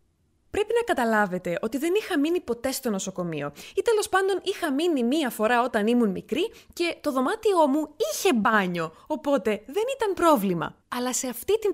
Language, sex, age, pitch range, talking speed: Greek, female, 20-39, 205-320 Hz, 170 wpm